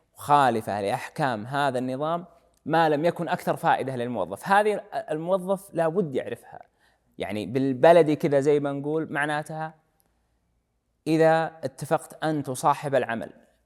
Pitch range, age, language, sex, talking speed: 135-165 Hz, 20-39, Arabic, male, 105 wpm